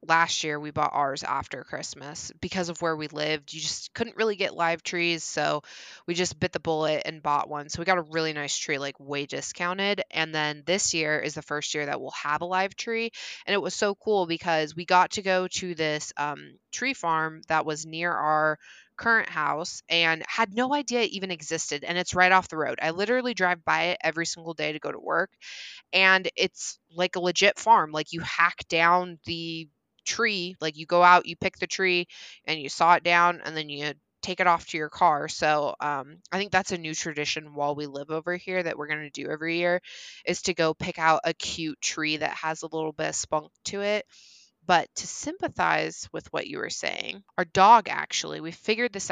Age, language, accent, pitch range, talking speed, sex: 20-39, English, American, 155-185 Hz, 225 wpm, female